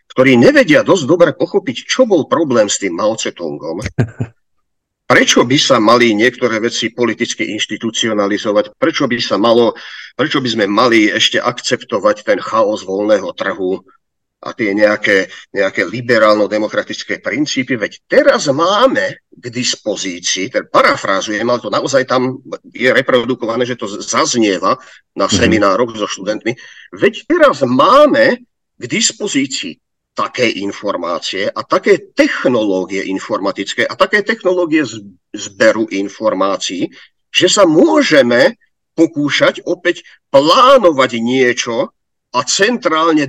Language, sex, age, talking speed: Slovak, male, 50-69, 115 wpm